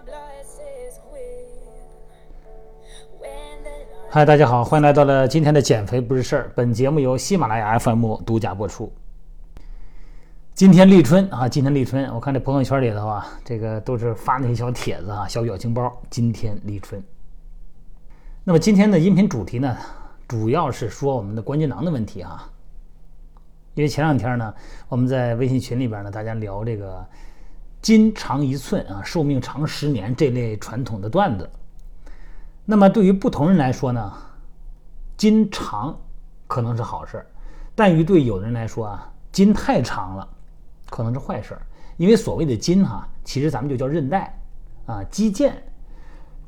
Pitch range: 115-170 Hz